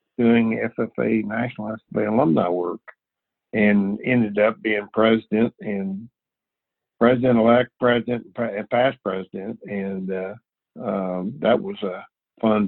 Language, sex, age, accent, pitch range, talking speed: English, male, 60-79, American, 95-115 Hz, 120 wpm